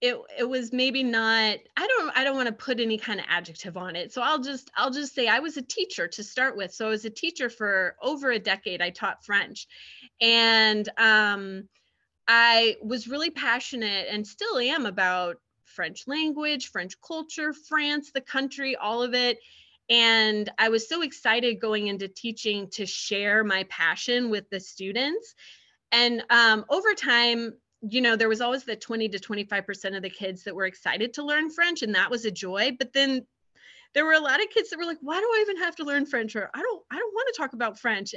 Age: 30-49